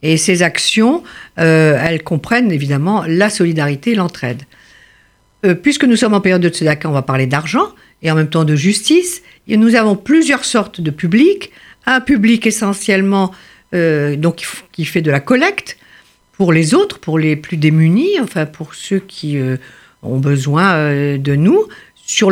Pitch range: 160-225 Hz